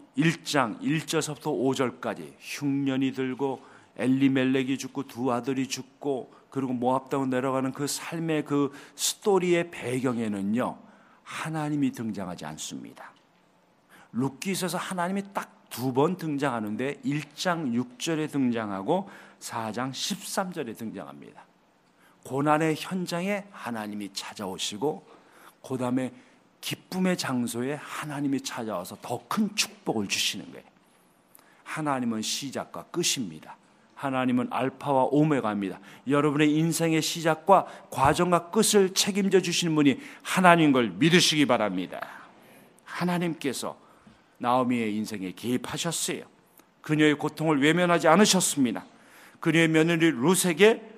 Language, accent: Korean, native